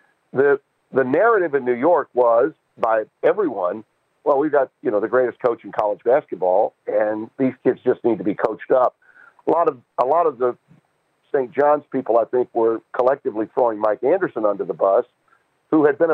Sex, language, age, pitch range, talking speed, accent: male, English, 50-69, 120-165 Hz, 195 wpm, American